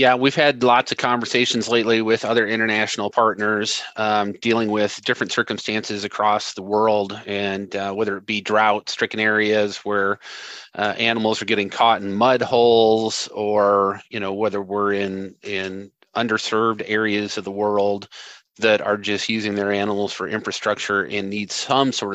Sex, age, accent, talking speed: male, 30-49, American, 165 wpm